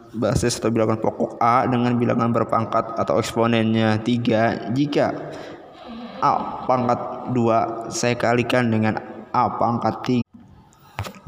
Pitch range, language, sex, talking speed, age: 115-125 Hz, Indonesian, male, 110 wpm, 20-39